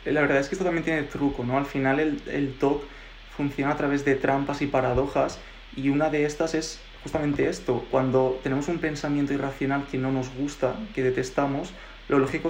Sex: male